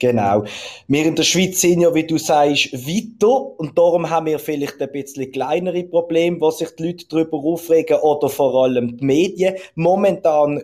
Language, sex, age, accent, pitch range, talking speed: German, male, 20-39, Austrian, 140-175 Hz, 180 wpm